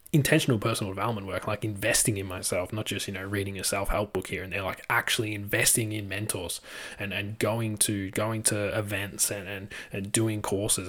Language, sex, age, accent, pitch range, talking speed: English, male, 20-39, Australian, 100-115 Hz, 200 wpm